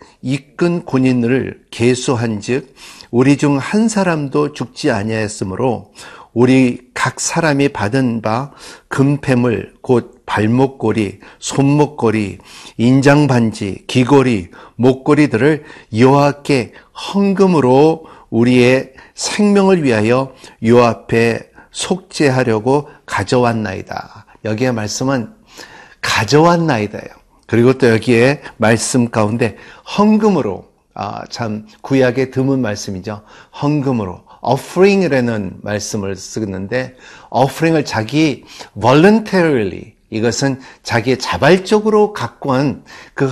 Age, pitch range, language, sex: 50-69, 115-150 Hz, Korean, male